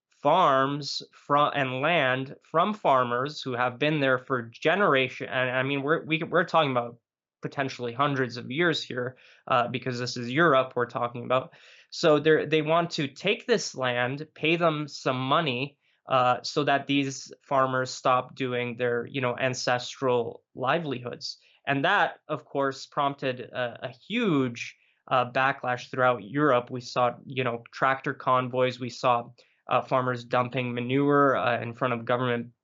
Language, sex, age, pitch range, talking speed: English, male, 20-39, 125-150 Hz, 160 wpm